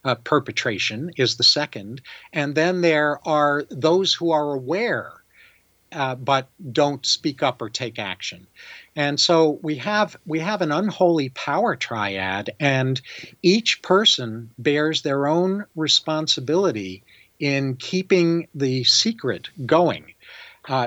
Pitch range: 125-165 Hz